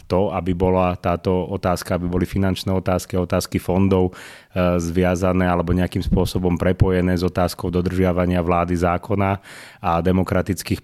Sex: male